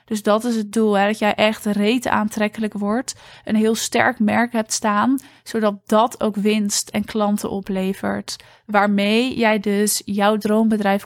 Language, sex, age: Dutch, female, 20-39